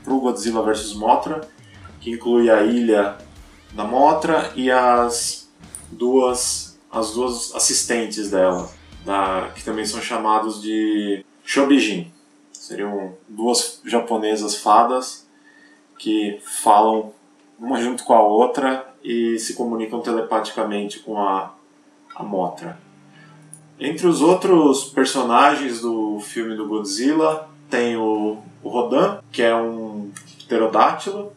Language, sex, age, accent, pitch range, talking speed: Portuguese, male, 20-39, Brazilian, 110-140 Hz, 110 wpm